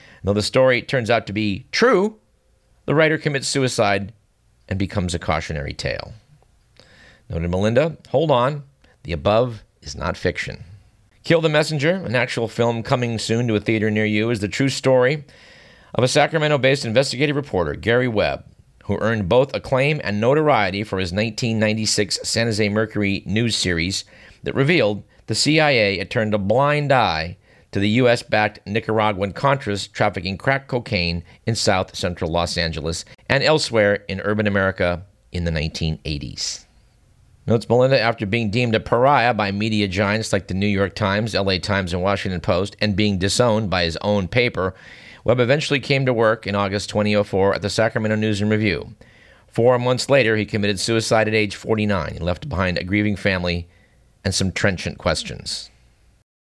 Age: 40-59